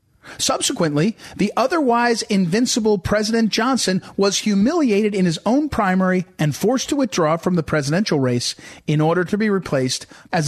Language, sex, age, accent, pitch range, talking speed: English, male, 40-59, American, 155-210 Hz, 150 wpm